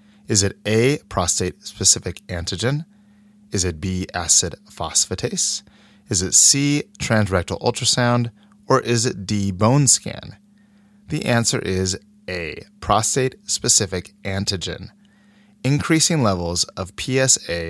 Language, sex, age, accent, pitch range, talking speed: English, male, 30-49, American, 95-140 Hz, 105 wpm